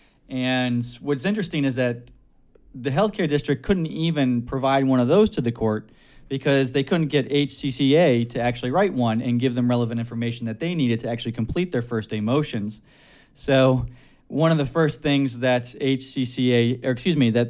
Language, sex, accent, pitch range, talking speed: English, male, American, 115-135 Hz, 180 wpm